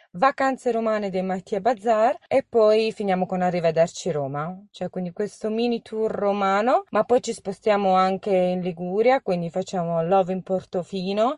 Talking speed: 155 wpm